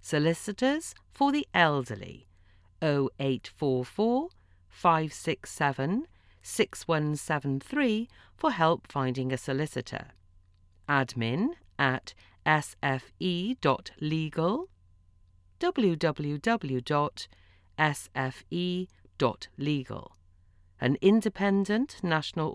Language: English